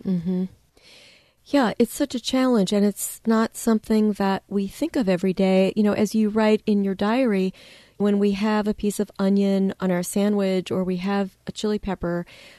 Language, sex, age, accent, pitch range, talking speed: English, female, 40-59, American, 180-215 Hz, 190 wpm